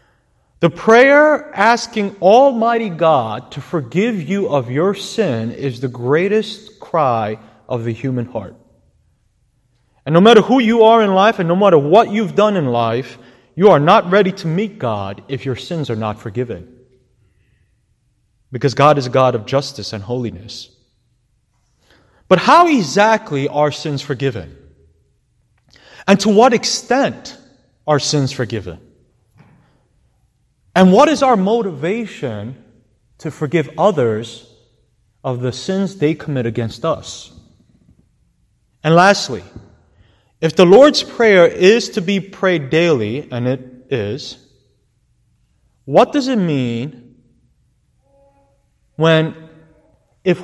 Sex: male